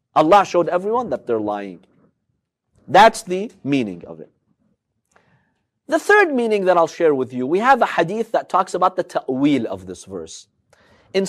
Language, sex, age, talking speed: English, male, 40-59, 170 wpm